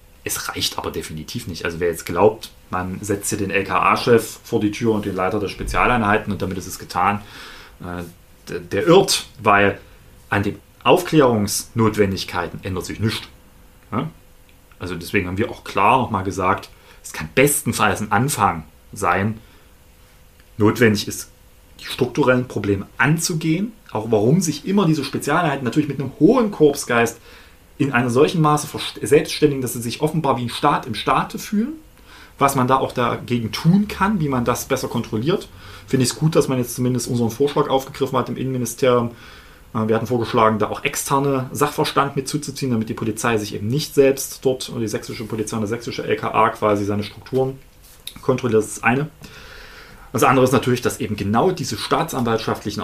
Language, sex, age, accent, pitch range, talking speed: German, male, 30-49, German, 100-135 Hz, 170 wpm